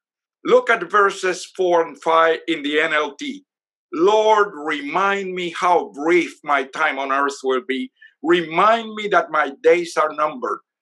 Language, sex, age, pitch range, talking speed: English, male, 60-79, 160-230 Hz, 150 wpm